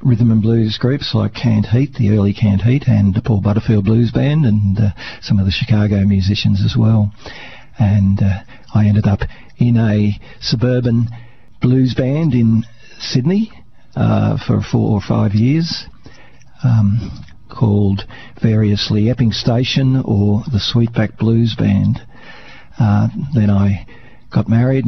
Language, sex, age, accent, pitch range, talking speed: English, male, 50-69, Australian, 105-120 Hz, 140 wpm